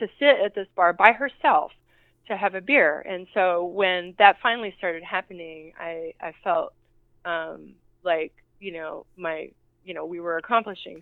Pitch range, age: 160-185 Hz, 20-39